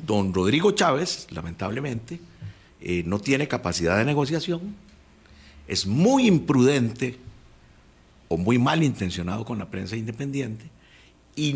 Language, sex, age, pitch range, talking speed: Spanish, male, 50-69, 95-150 Hz, 110 wpm